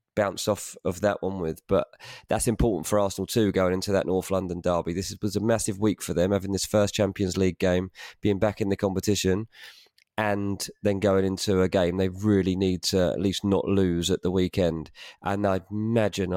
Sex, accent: male, British